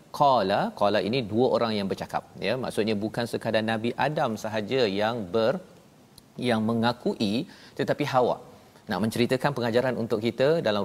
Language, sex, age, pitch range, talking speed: Malayalam, male, 40-59, 110-125 Hz, 145 wpm